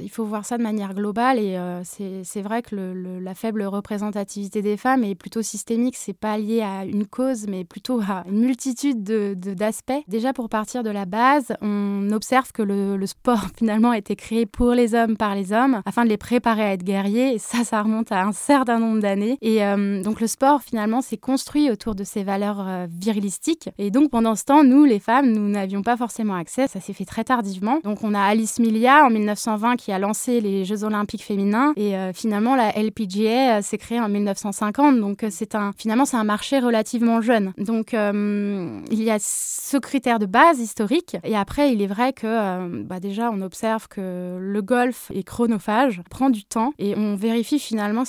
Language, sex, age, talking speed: French, female, 20-39, 215 wpm